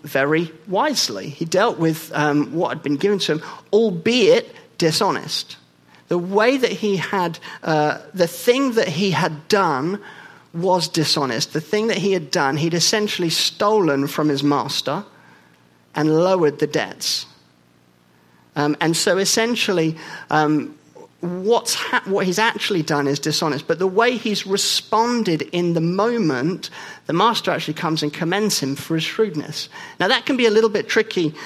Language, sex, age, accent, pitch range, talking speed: English, male, 40-59, British, 145-195 Hz, 155 wpm